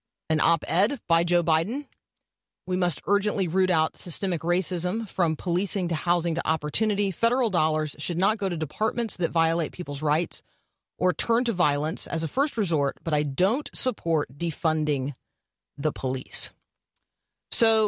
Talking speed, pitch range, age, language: 150 wpm, 150-195 Hz, 30-49, English